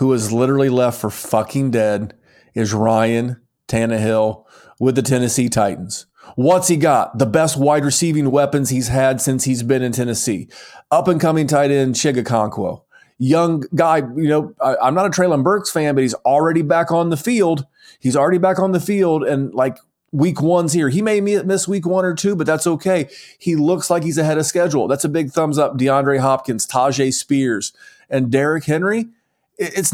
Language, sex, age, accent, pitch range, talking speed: English, male, 30-49, American, 130-170 Hz, 190 wpm